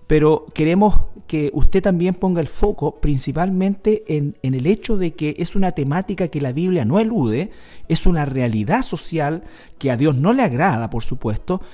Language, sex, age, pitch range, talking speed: Spanish, male, 40-59, 130-175 Hz, 180 wpm